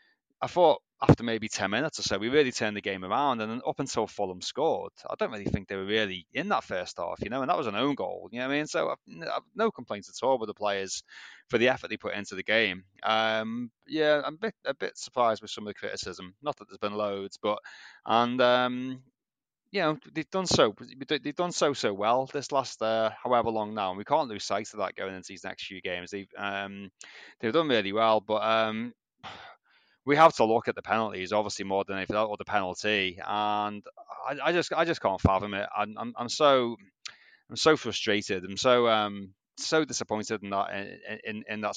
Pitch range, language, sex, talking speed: 100-130 Hz, English, male, 235 wpm